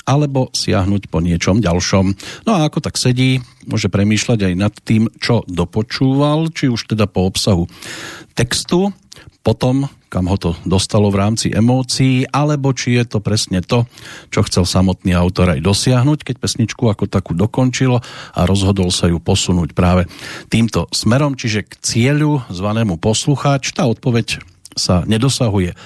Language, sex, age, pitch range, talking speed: Slovak, male, 50-69, 95-130 Hz, 150 wpm